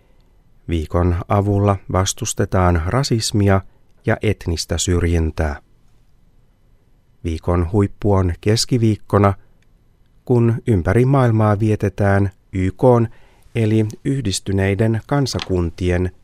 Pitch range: 95-120 Hz